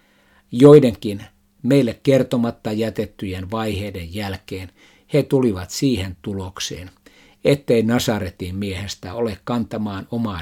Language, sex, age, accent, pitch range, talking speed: Finnish, male, 60-79, native, 95-115 Hz, 90 wpm